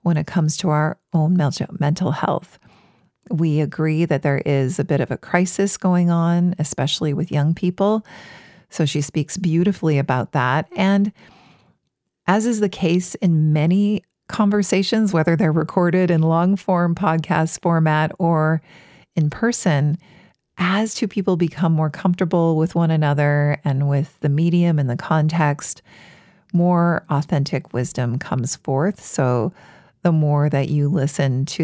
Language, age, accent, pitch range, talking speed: English, 50-69, American, 145-180 Hz, 145 wpm